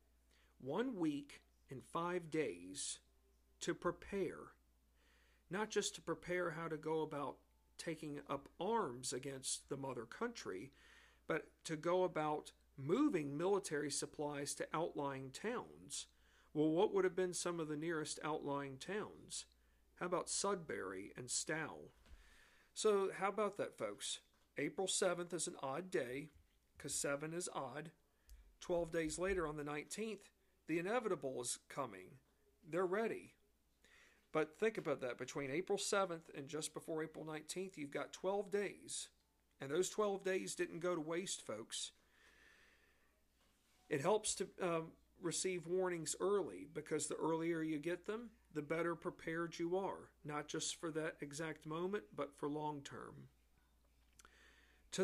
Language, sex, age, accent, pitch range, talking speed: English, male, 50-69, American, 140-185 Hz, 140 wpm